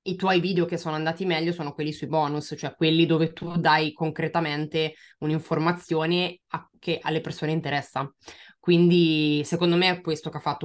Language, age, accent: Italian, 20-39, native